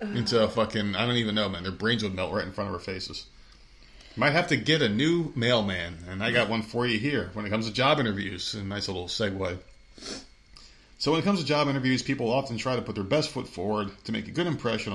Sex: male